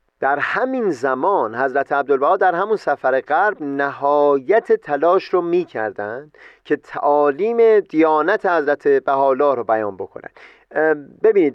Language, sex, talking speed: Persian, male, 120 wpm